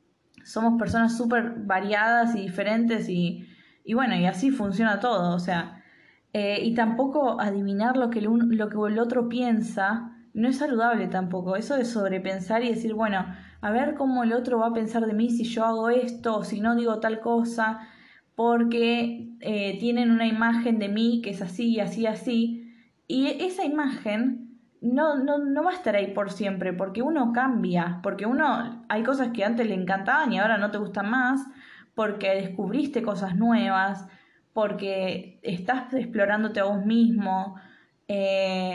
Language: Spanish